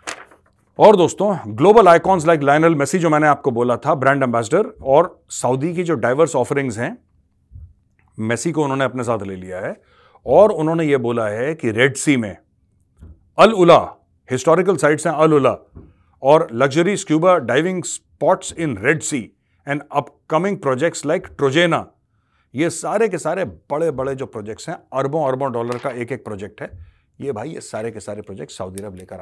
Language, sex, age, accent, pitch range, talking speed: Hindi, male, 40-59, native, 105-155 Hz, 175 wpm